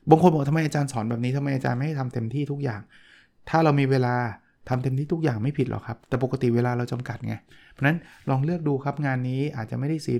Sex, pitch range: male, 120-145 Hz